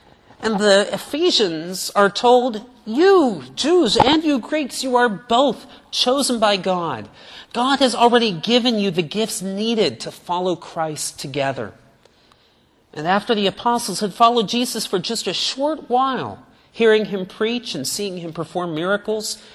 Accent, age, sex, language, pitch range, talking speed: American, 40-59, male, English, 155-240 Hz, 145 wpm